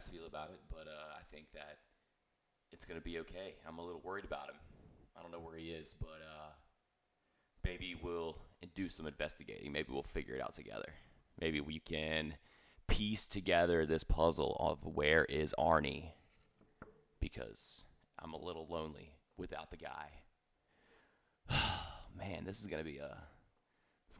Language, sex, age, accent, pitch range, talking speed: English, male, 30-49, American, 80-90 Hz, 155 wpm